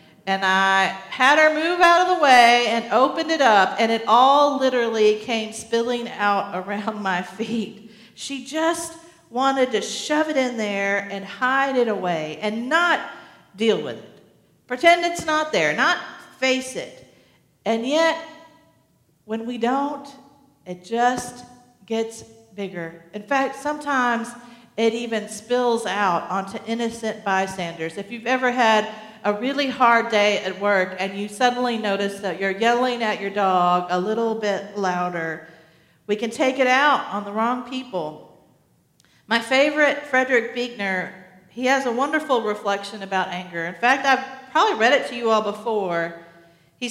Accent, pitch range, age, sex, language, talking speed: American, 200-260 Hz, 50-69, female, English, 155 wpm